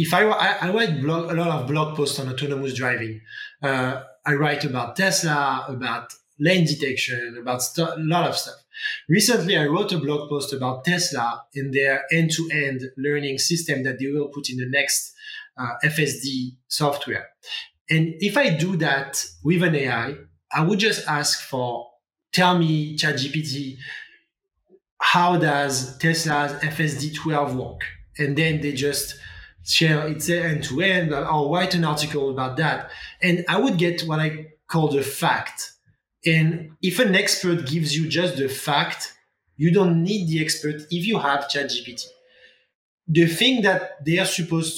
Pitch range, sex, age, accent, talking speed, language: 140-170 Hz, male, 20-39, French, 160 wpm, English